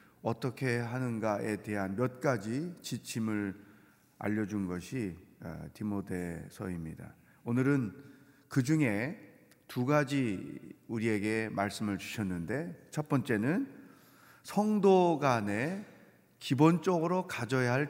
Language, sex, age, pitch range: Korean, male, 40-59, 105-145 Hz